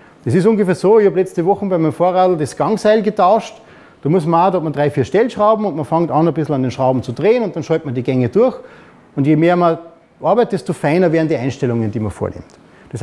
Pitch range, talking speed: 150-205 Hz, 260 wpm